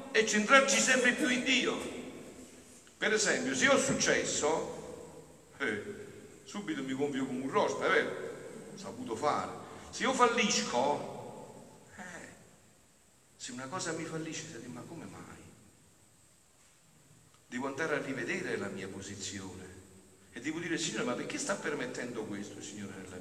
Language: Italian